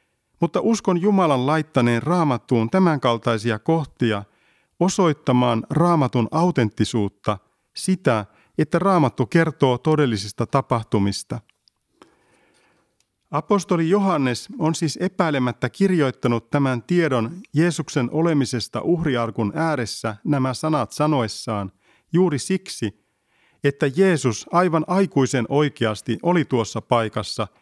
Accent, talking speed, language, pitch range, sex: native, 90 wpm, Finnish, 115-170 Hz, male